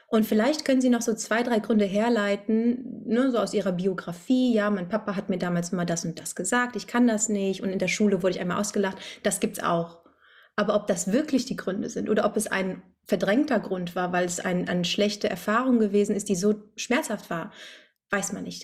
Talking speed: 225 wpm